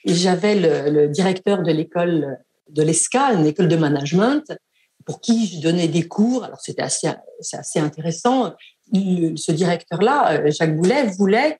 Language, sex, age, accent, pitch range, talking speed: French, female, 50-69, French, 165-240 Hz, 155 wpm